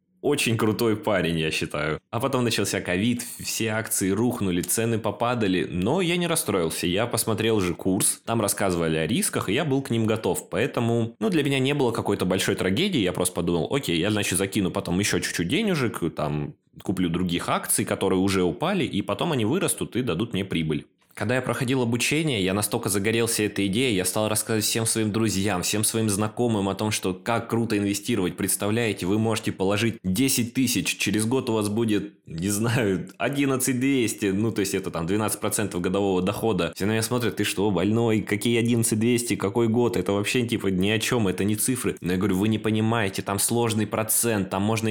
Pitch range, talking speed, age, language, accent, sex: 95-115 Hz, 190 wpm, 20-39, Russian, native, male